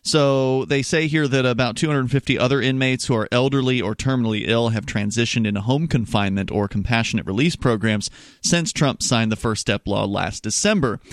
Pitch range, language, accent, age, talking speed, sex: 110-145 Hz, English, American, 30-49, 180 wpm, male